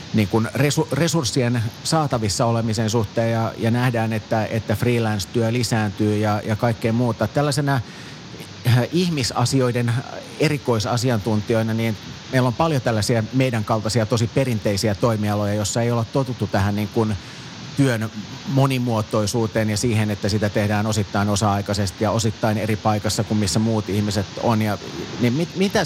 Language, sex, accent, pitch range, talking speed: Finnish, male, native, 110-125 Hz, 135 wpm